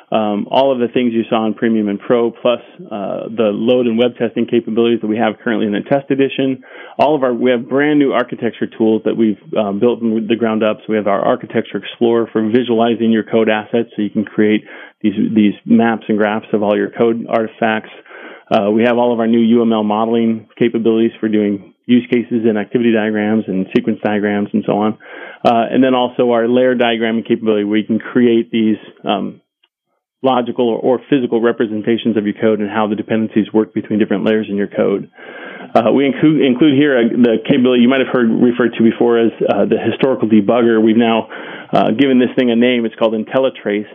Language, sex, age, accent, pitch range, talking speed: English, male, 30-49, American, 110-120 Hz, 210 wpm